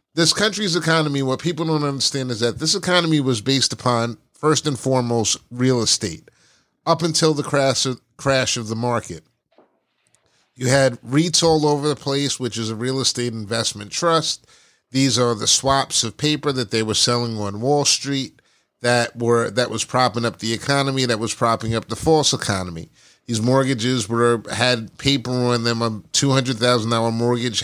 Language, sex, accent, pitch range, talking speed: English, male, American, 115-145 Hz, 175 wpm